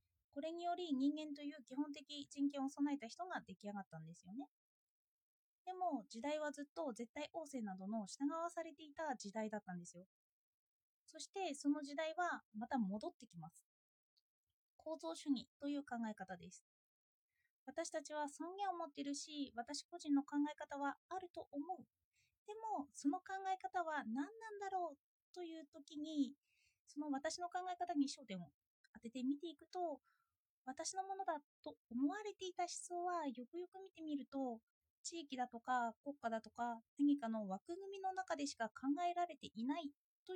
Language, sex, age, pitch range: Japanese, female, 20-39, 230-335 Hz